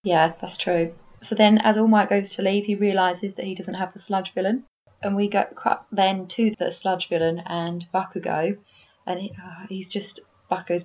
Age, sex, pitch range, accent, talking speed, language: 20-39, female, 180-220 Hz, British, 195 wpm, English